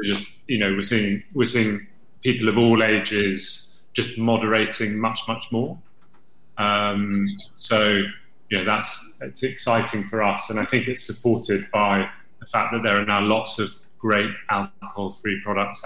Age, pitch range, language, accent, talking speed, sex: 30-49, 100-115 Hz, English, British, 165 wpm, male